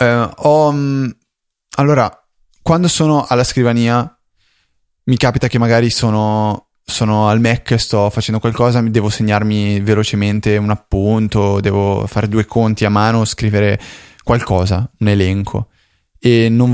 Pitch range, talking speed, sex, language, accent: 105-125 Hz, 120 wpm, male, Italian, native